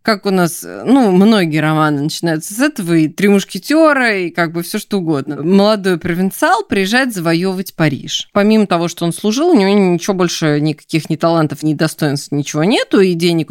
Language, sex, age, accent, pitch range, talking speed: Russian, female, 20-39, native, 160-215 Hz, 180 wpm